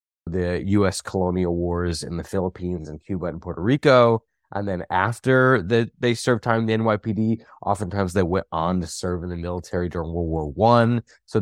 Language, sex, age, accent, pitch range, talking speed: English, male, 20-39, American, 90-115 Hz, 190 wpm